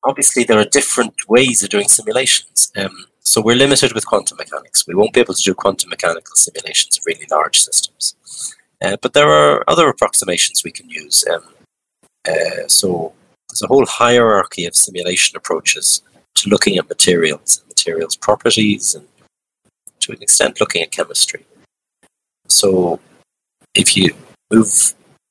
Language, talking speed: English, 150 wpm